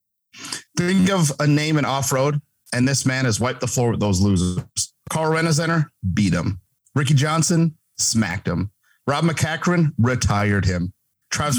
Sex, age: male, 40-59